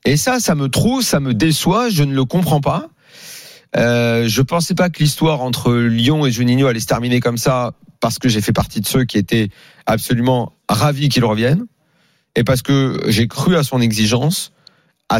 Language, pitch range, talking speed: French, 120-155 Hz, 200 wpm